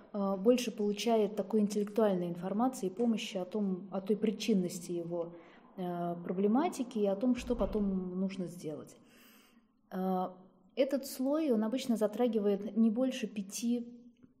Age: 20-39